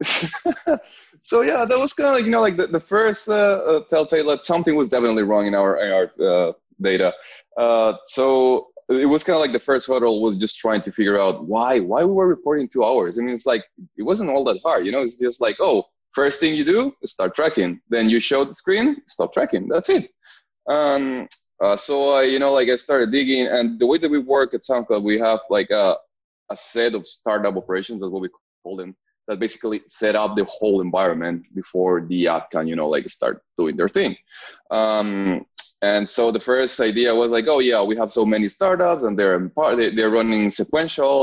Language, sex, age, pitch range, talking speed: English, male, 20-39, 100-150 Hz, 215 wpm